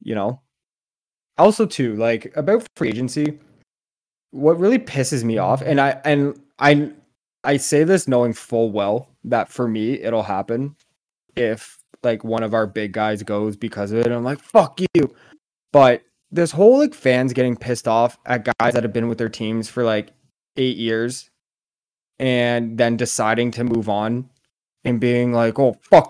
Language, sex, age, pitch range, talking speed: English, male, 20-39, 115-140 Hz, 170 wpm